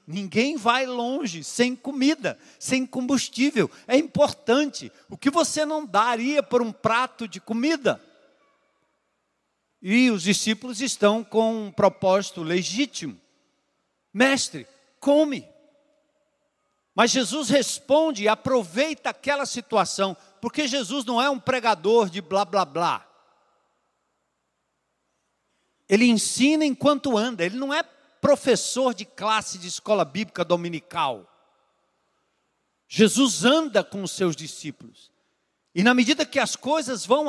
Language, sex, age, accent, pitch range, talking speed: Portuguese, male, 50-69, Brazilian, 200-275 Hz, 115 wpm